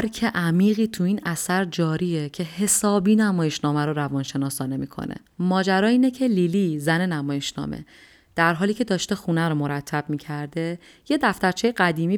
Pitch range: 150-190 Hz